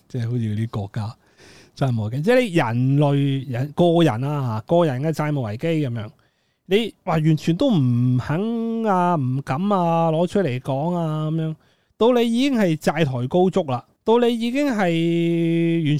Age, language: 30-49, Chinese